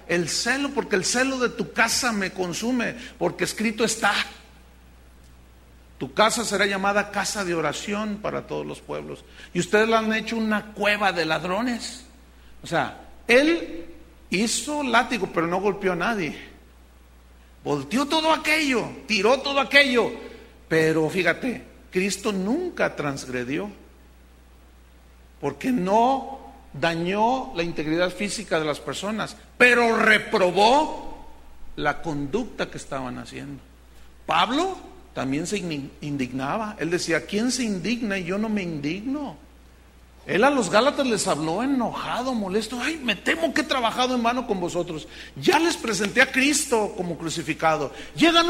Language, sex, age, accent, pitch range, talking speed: Spanish, male, 50-69, Mexican, 145-235 Hz, 135 wpm